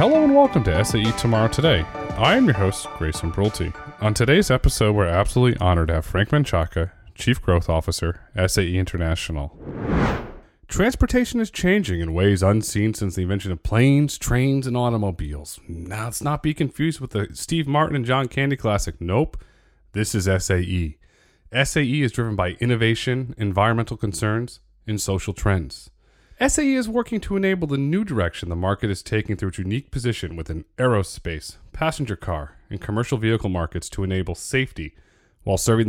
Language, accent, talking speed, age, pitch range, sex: English, American, 165 wpm, 30-49, 90-135 Hz, male